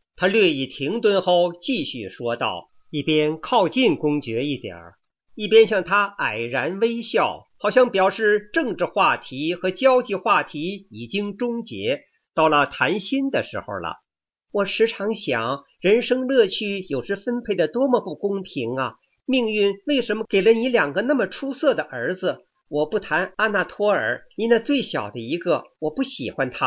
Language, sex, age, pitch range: English, male, 50-69, 165-240 Hz